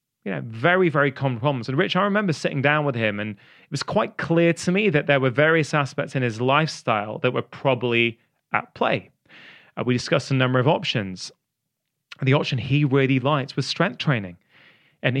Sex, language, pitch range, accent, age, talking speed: male, English, 130-160 Hz, British, 30-49, 195 wpm